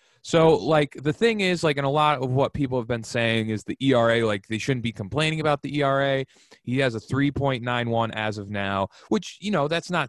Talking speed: 225 wpm